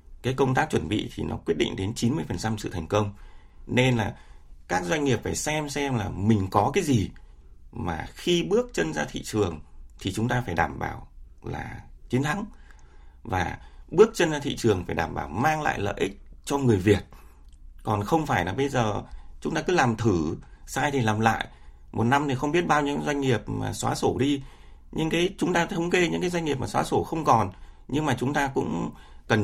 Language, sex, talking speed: Vietnamese, male, 220 wpm